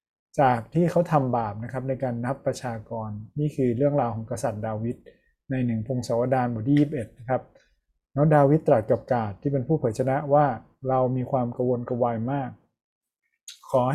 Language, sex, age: Thai, male, 20-39